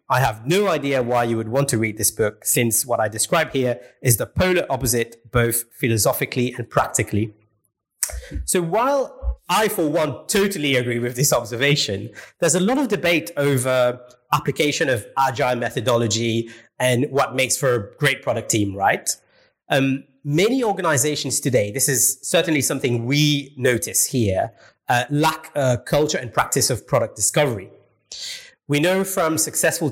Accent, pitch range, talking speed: British, 120-155 Hz, 155 wpm